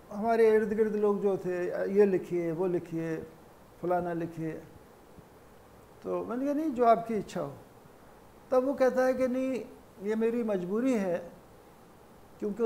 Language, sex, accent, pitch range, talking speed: Hindi, male, native, 180-220 Hz, 145 wpm